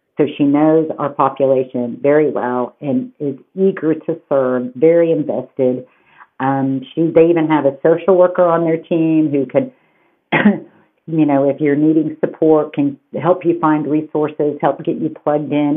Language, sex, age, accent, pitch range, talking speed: English, female, 50-69, American, 140-175 Hz, 160 wpm